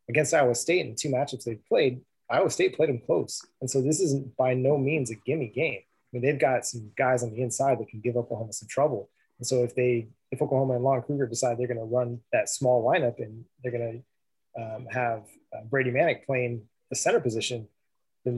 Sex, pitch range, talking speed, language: male, 120-135 Hz, 225 wpm, English